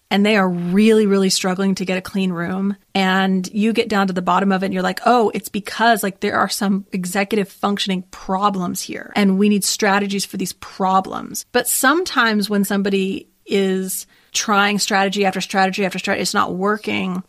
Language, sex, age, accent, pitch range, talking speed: English, female, 30-49, American, 195-250 Hz, 190 wpm